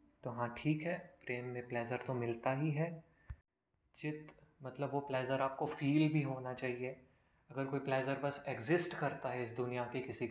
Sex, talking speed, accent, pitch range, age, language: male, 180 wpm, native, 125-155 Hz, 20-39, Hindi